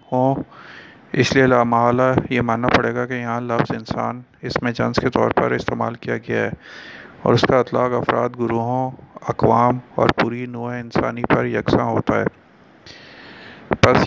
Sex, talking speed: male, 160 wpm